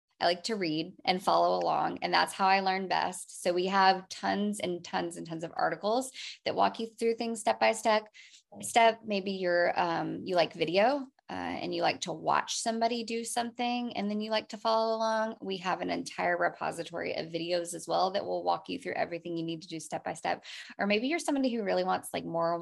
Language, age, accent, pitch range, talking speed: English, 20-39, American, 170-215 Hz, 225 wpm